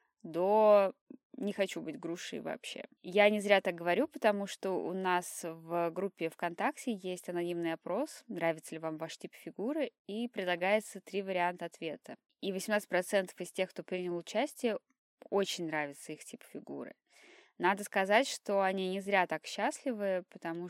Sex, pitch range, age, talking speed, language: female, 170-210 Hz, 20-39, 155 wpm, Russian